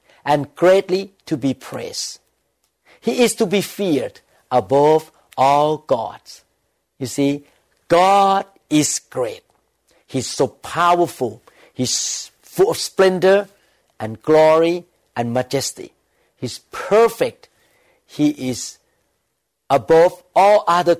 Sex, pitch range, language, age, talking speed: male, 135-185 Hz, English, 50-69, 105 wpm